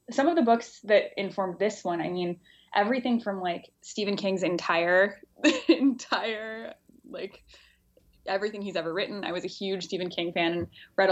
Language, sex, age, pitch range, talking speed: English, female, 10-29, 175-200 Hz, 165 wpm